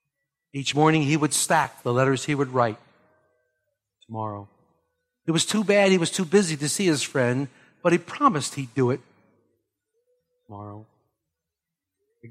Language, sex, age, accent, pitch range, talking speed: English, male, 50-69, American, 125-160 Hz, 150 wpm